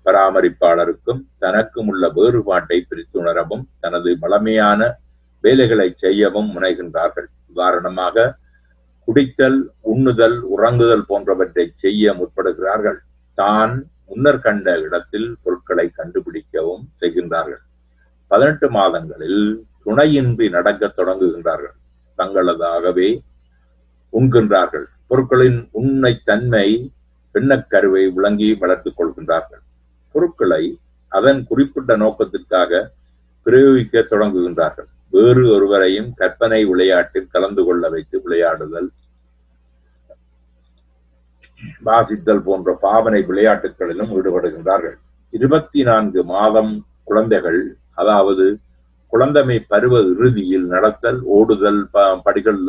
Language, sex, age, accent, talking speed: Tamil, male, 50-69, native, 75 wpm